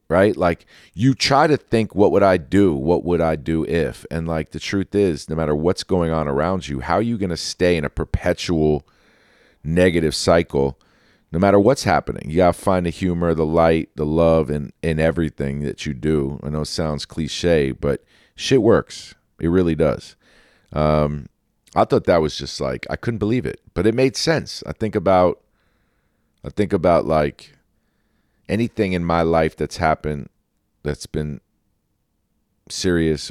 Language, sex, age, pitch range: English, male, 40-59, 75-90 Hz